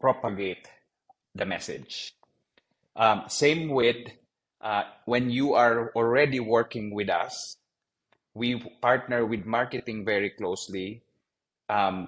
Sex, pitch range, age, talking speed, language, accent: male, 100-120 Hz, 30-49, 105 wpm, English, Filipino